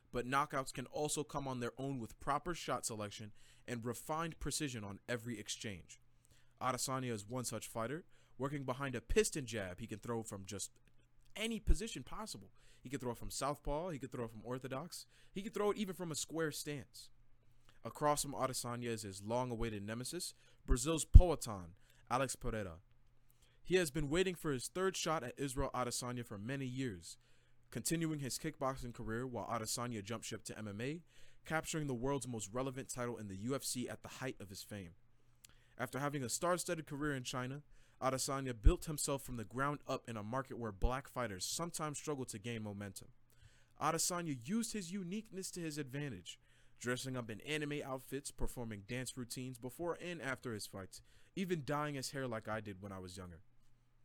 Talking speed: 180 wpm